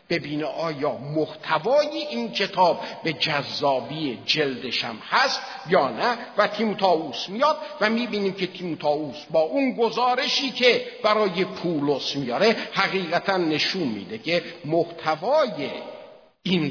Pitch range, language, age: 160-265 Hz, Persian, 50-69